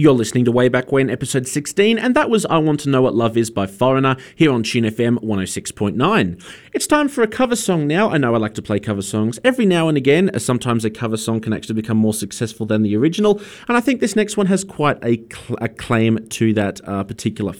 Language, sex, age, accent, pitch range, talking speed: English, male, 30-49, Australian, 105-145 Hz, 240 wpm